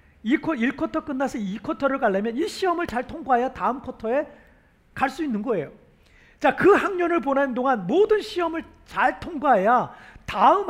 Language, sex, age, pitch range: Korean, male, 40-59, 230-315 Hz